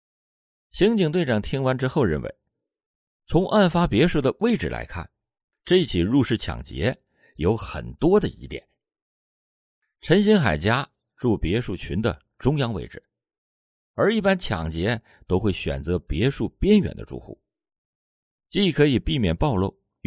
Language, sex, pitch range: Chinese, male, 80-130 Hz